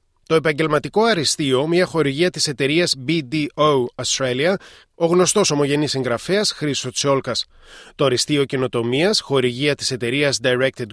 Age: 30-49